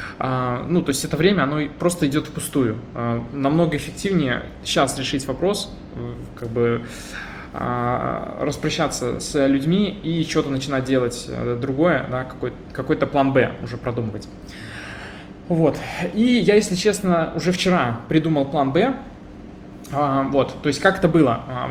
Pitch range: 130-160 Hz